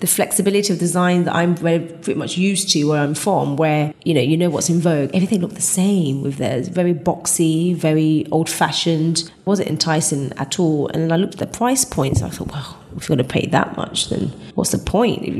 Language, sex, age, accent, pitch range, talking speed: English, female, 20-39, British, 150-175 Hz, 230 wpm